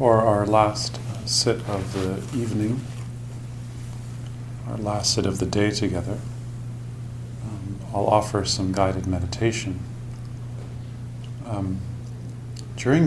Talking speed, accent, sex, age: 100 wpm, American, male, 40-59